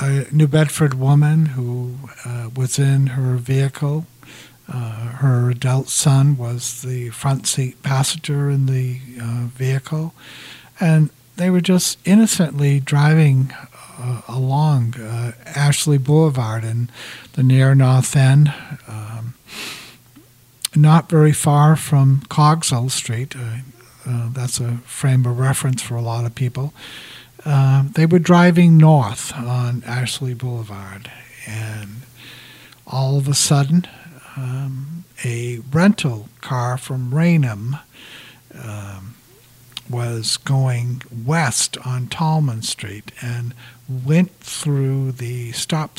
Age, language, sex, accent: 60-79, English, male, American